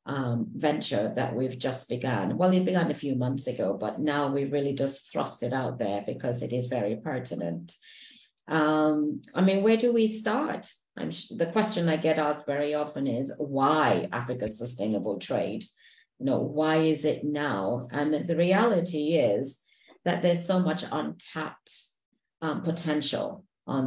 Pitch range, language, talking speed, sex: 135-155 Hz, English, 160 wpm, female